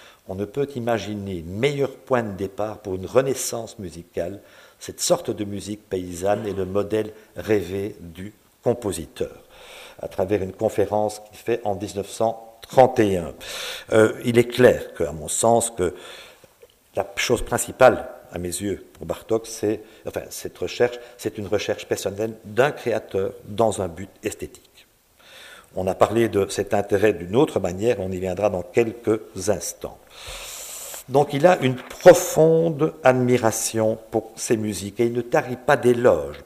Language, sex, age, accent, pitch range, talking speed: French, male, 50-69, French, 100-120 Hz, 150 wpm